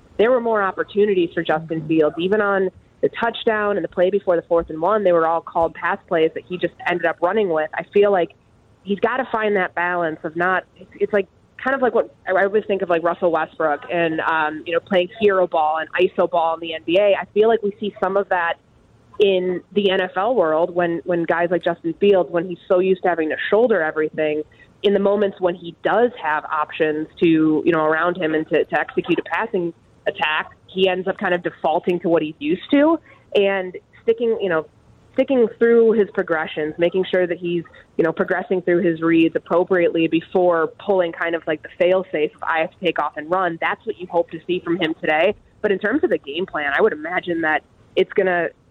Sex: female